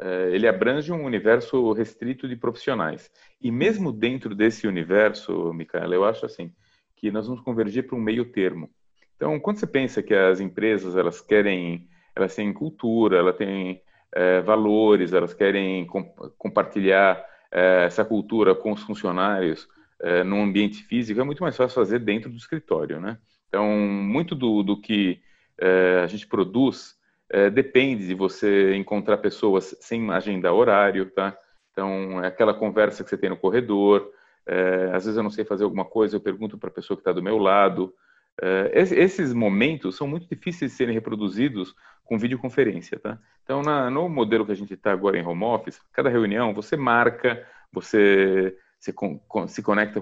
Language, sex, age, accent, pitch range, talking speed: Portuguese, male, 30-49, Brazilian, 95-120 Hz, 170 wpm